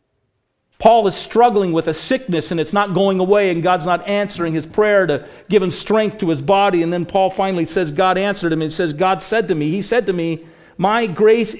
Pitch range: 145-200 Hz